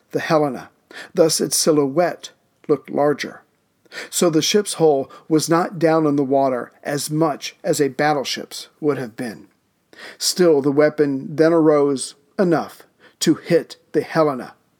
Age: 50-69